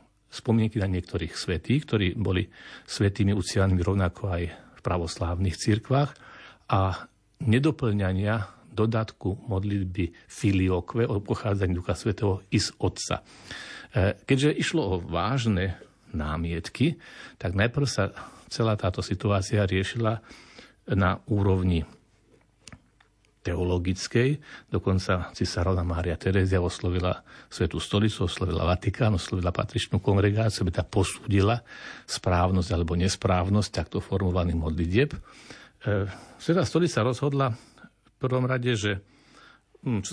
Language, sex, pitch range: Slovak, male, 90-110 Hz